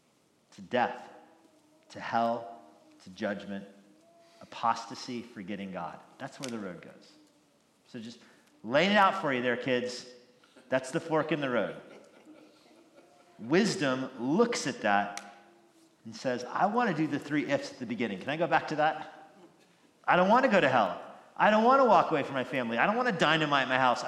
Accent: American